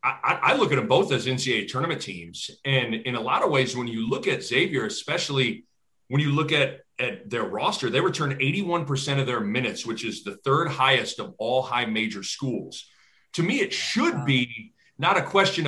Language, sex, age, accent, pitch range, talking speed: English, male, 30-49, American, 125-155 Hz, 205 wpm